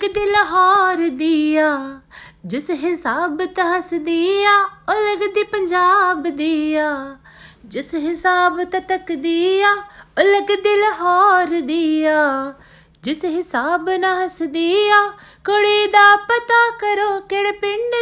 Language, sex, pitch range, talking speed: Hindi, female, 270-390 Hz, 45 wpm